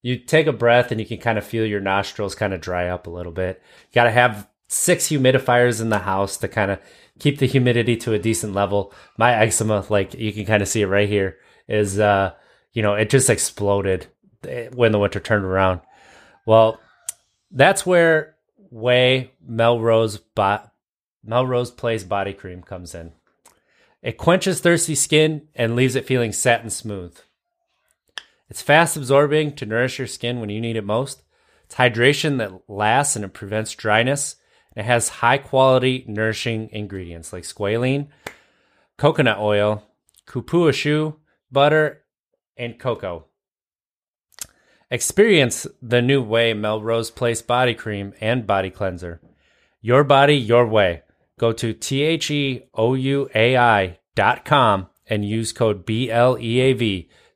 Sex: male